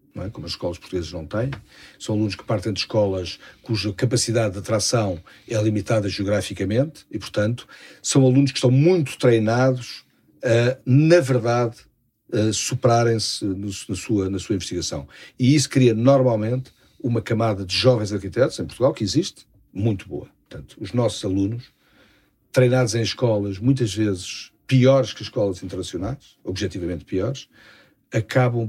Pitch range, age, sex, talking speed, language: 95-120 Hz, 50-69, male, 135 wpm, Portuguese